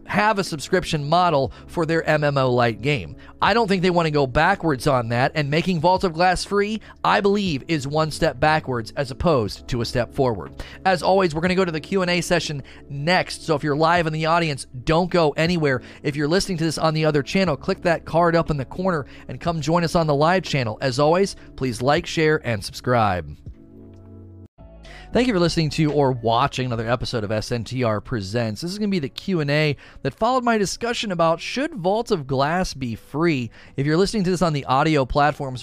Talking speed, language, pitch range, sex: 215 wpm, English, 125-170 Hz, male